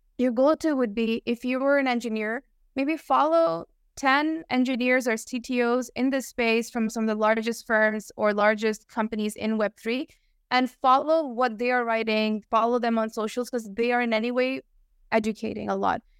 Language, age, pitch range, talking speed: English, 20-39, 220-255 Hz, 185 wpm